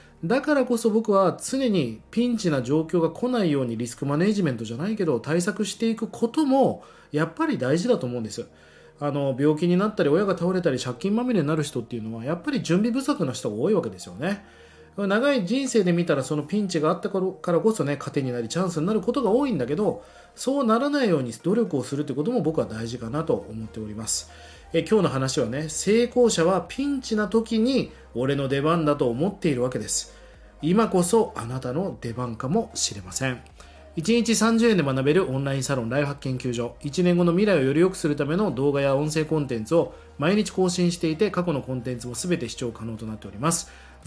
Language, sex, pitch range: Japanese, male, 130-210 Hz